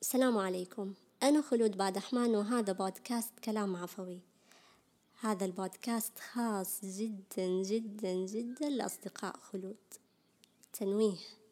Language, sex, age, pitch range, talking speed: Arabic, male, 20-39, 200-235 Hz, 100 wpm